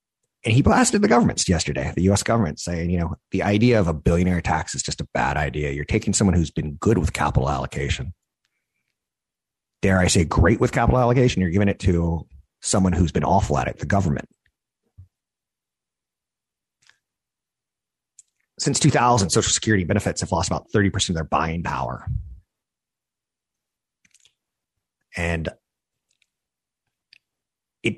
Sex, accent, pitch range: male, American, 80-100 Hz